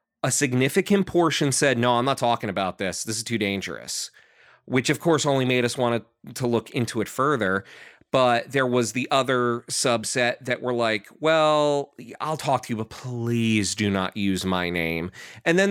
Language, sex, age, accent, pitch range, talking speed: English, male, 30-49, American, 115-150 Hz, 185 wpm